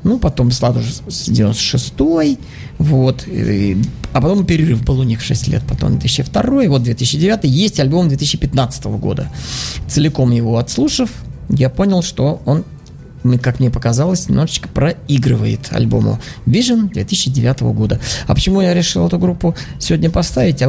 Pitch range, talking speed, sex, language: 120-155 Hz, 135 wpm, male, Russian